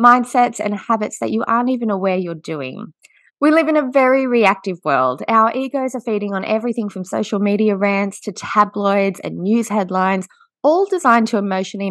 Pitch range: 185-245 Hz